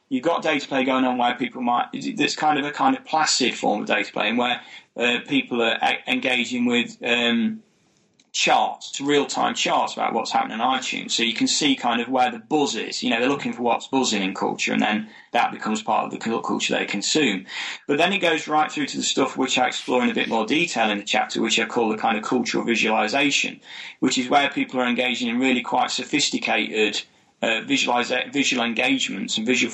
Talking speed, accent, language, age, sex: 220 wpm, British, English, 30-49, male